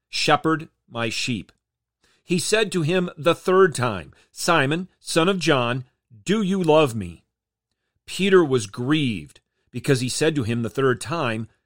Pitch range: 115-155 Hz